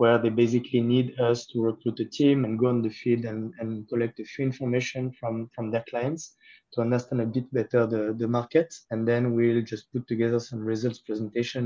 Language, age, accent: English, 20-39, French